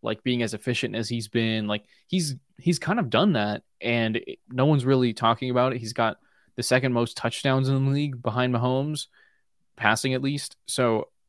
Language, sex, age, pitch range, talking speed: English, male, 20-39, 110-125 Hz, 195 wpm